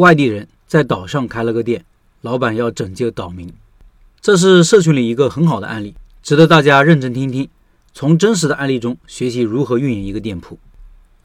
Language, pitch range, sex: Chinese, 125-175 Hz, male